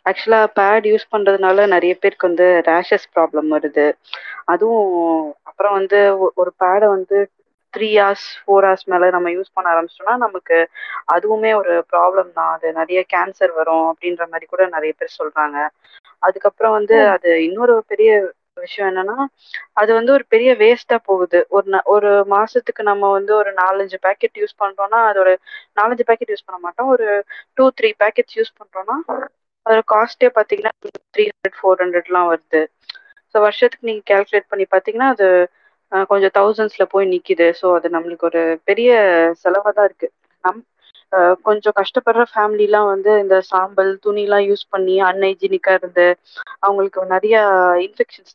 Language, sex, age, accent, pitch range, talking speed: Tamil, female, 20-39, native, 180-215 Hz, 105 wpm